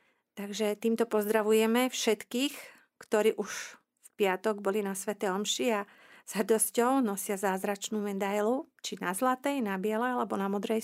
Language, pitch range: Slovak, 205-235 Hz